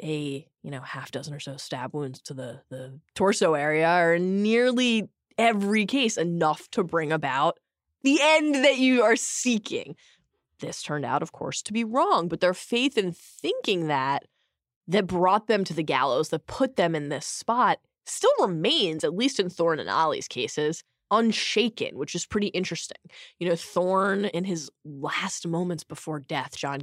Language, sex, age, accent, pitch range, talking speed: English, female, 20-39, American, 155-210 Hz, 175 wpm